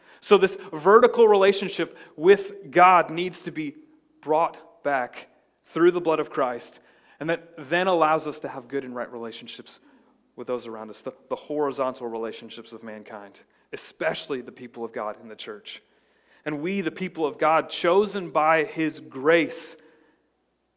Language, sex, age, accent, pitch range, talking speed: English, male, 30-49, American, 150-200 Hz, 160 wpm